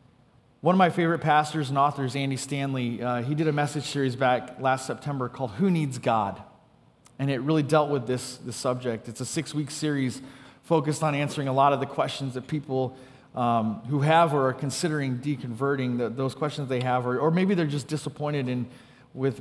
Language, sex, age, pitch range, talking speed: English, male, 30-49, 125-150 Hz, 200 wpm